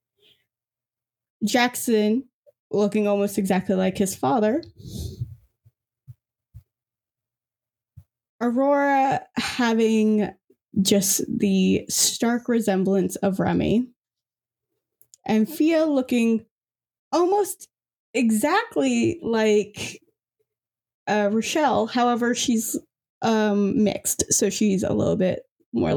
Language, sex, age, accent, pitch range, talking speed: English, female, 10-29, American, 145-245 Hz, 75 wpm